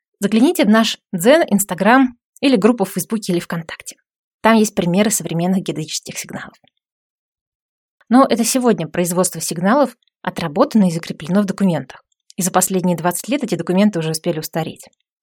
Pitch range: 180-245 Hz